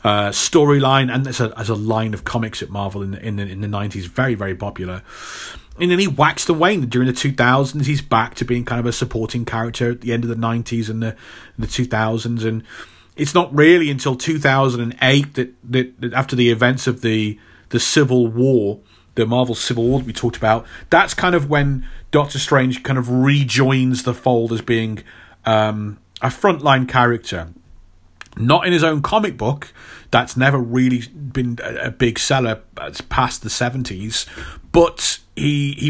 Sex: male